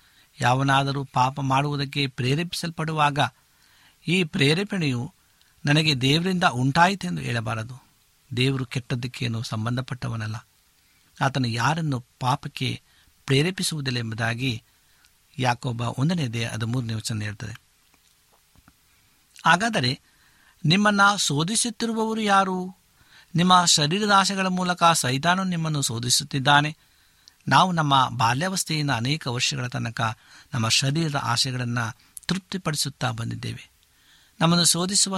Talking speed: 80 wpm